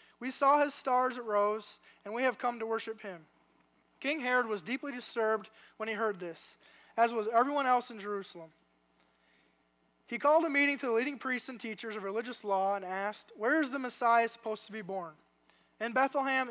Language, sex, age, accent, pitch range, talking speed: English, male, 20-39, American, 200-255 Hz, 195 wpm